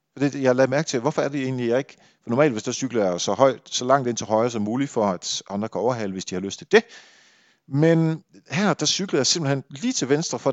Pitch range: 115-160 Hz